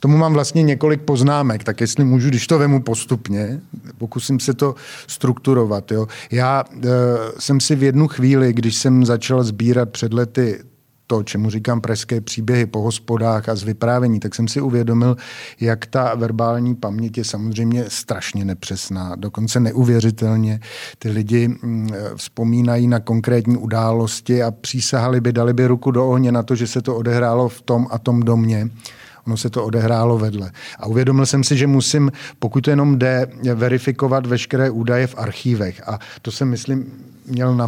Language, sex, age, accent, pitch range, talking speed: Czech, male, 50-69, native, 115-130 Hz, 165 wpm